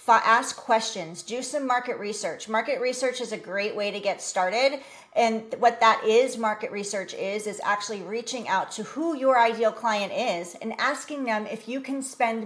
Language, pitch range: English, 200-245 Hz